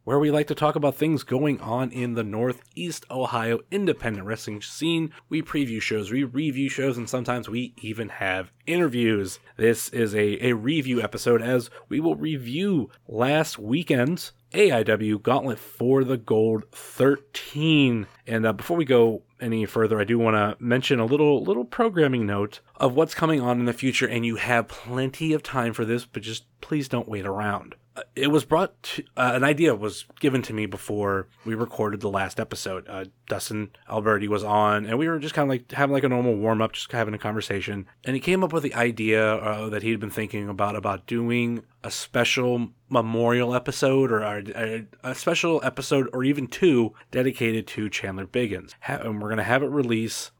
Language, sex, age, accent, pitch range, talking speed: English, male, 30-49, American, 105-130 Hz, 195 wpm